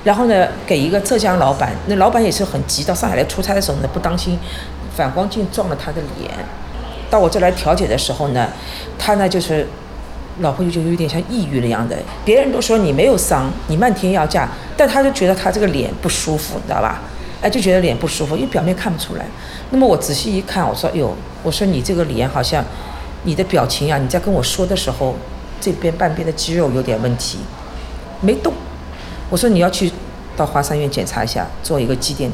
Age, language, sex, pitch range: 40-59, Chinese, female, 115-190 Hz